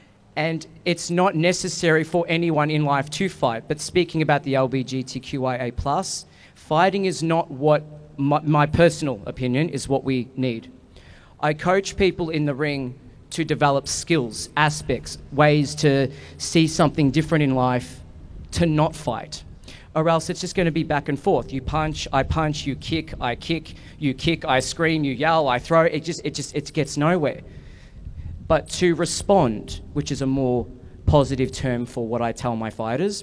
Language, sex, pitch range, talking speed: English, male, 125-155 Hz, 170 wpm